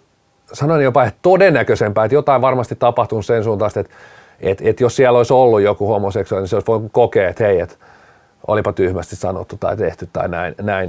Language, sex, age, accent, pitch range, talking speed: Finnish, male, 40-59, native, 110-130 Hz, 195 wpm